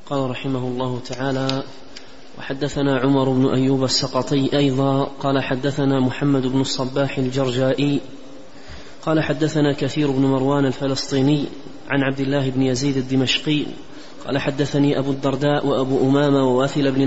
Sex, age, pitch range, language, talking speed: male, 30-49, 140-150 Hz, Arabic, 125 wpm